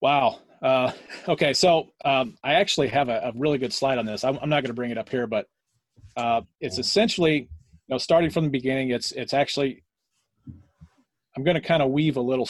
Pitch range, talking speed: 115-145 Hz, 215 wpm